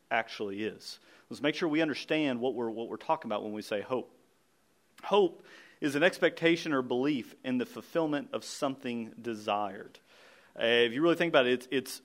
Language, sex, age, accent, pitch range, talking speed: English, male, 40-59, American, 130-185 Hz, 190 wpm